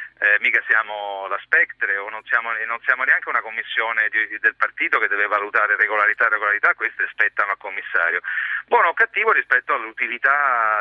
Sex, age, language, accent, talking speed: male, 40-59, Italian, native, 180 wpm